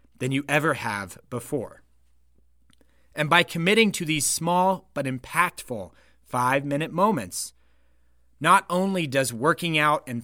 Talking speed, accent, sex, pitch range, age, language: 125 wpm, American, male, 105-155 Hz, 30-49, English